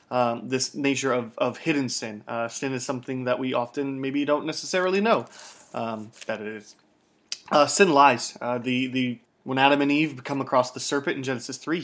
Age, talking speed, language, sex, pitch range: 20-39, 200 wpm, English, male, 120-140 Hz